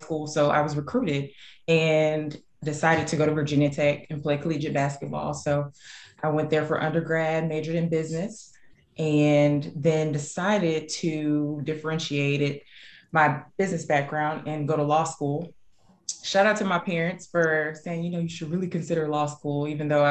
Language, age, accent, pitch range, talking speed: English, 20-39, American, 150-165 Hz, 165 wpm